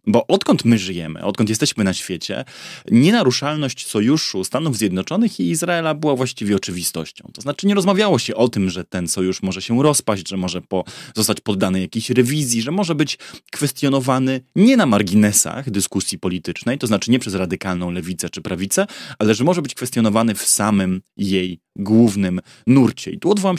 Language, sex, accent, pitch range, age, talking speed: Polish, male, native, 95-130 Hz, 20-39, 170 wpm